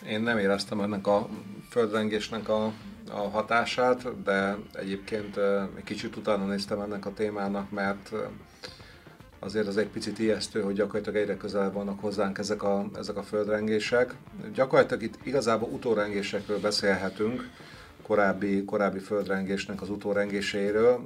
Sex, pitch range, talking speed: male, 100-105 Hz, 130 wpm